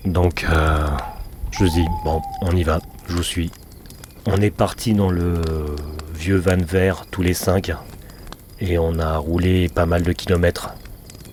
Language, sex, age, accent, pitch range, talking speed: French, male, 40-59, French, 85-100 Hz, 165 wpm